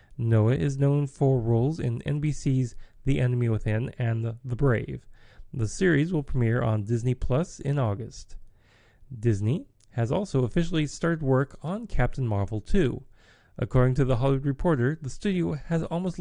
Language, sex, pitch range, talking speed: English, male, 110-150 Hz, 150 wpm